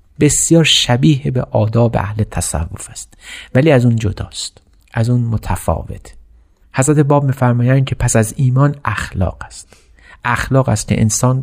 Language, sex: Persian, male